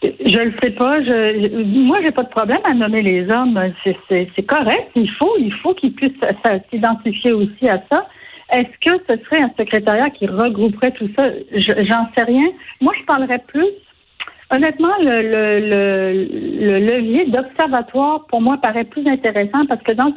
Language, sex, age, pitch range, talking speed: French, female, 60-79, 220-275 Hz, 180 wpm